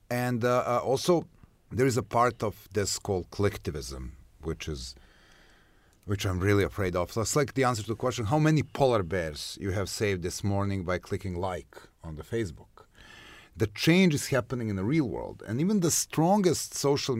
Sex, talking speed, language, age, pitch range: male, 190 wpm, English, 30-49, 90-125 Hz